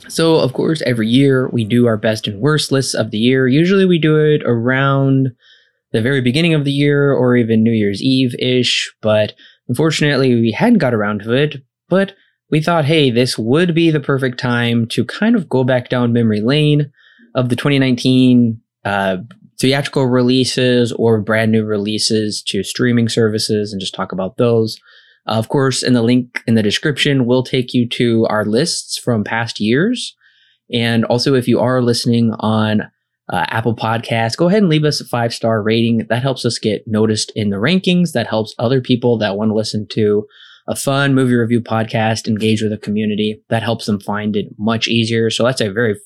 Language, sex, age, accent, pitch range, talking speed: English, male, 20-39, American, 110-135 Hz, 190 wpm